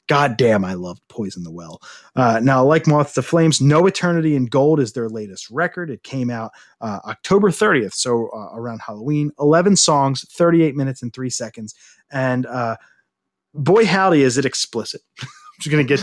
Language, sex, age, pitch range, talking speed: English, male, 30-49, 125-175 Hz, 185 wpm